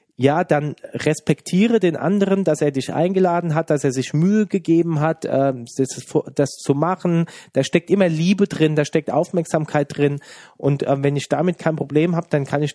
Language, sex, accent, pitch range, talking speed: German, male, German, 130-160 Hz, 180 wpm